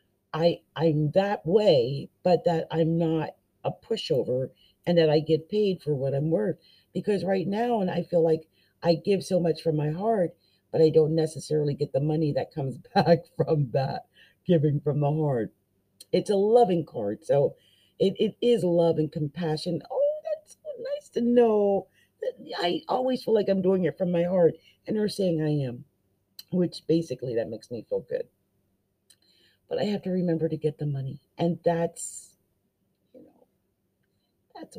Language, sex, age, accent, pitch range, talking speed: English, female, 50-69, American, 155-205 Hz, 175 wpm